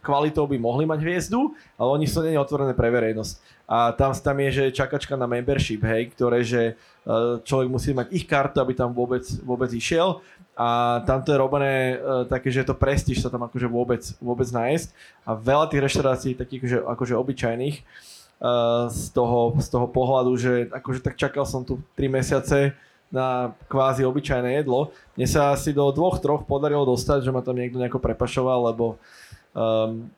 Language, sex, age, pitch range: Slovak, male, 20-39, 125-145 Hz